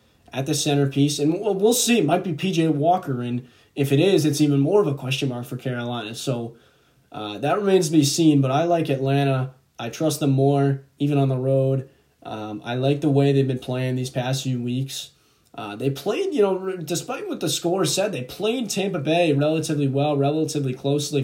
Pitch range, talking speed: 125-155 Hz, 210 wpm